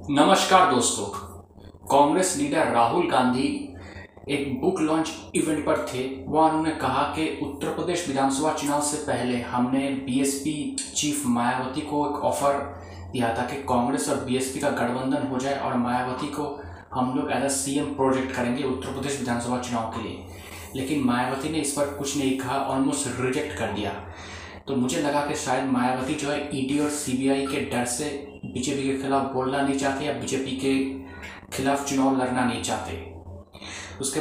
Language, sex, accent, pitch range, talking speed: Hindi, male, native, 120-140 Hz, 170 wpm